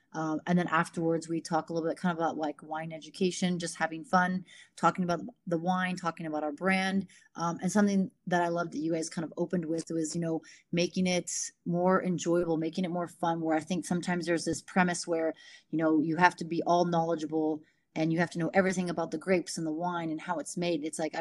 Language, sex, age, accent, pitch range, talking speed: English, female, 30-49, American, 160-180 Hz, 240 wpm